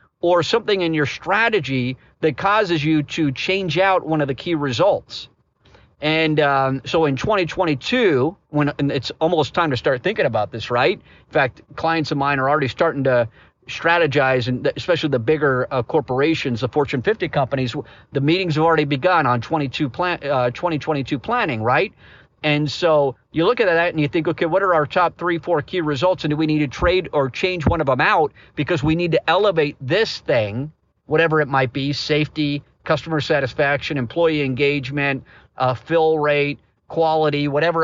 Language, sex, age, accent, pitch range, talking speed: English, male, 50-69, American, 135-165 Hz, 175 wpm